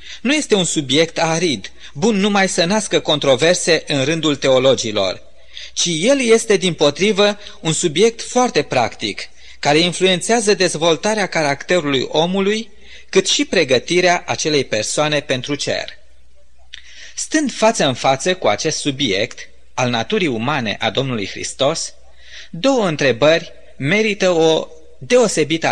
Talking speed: 120 wpm